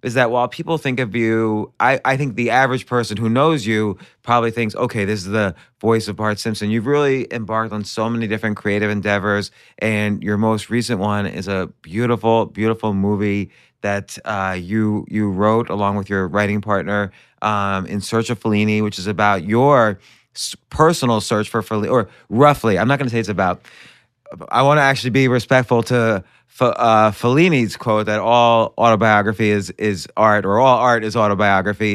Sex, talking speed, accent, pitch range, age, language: male, 185 wpm, American, 100-120 Hz, 30-49, English